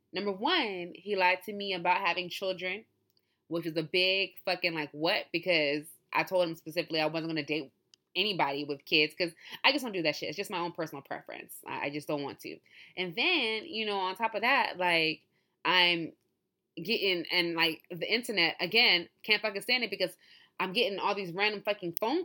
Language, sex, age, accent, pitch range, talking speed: English, female, 20-39, American, 180-235 Hz, 200 wpm